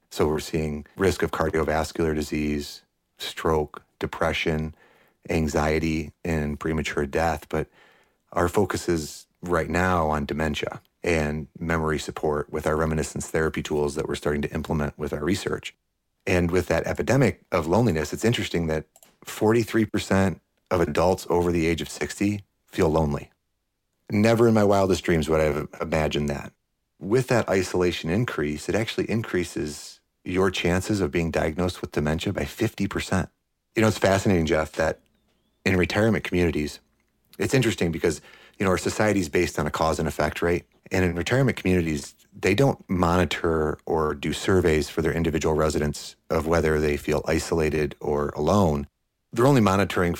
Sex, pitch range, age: male, 75-95 Hz, 30-49